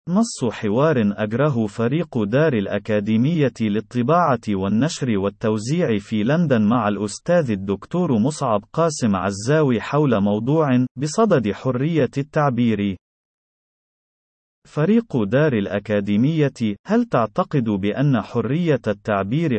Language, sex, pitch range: Arabic, male, 105-150 Hz